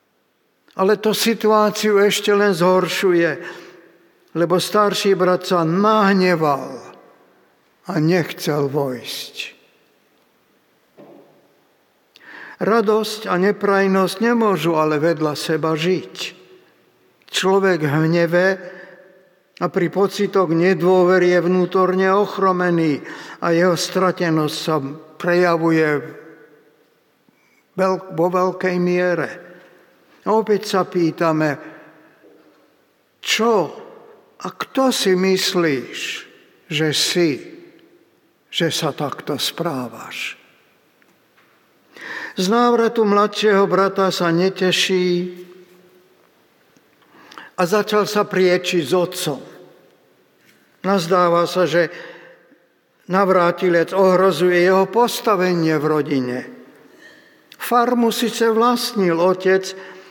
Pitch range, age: 175-200 Hz, 60-79